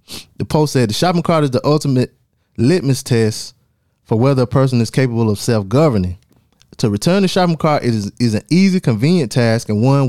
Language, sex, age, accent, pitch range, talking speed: English, male, 20-39, American, 105-135 Hz, 190 wpm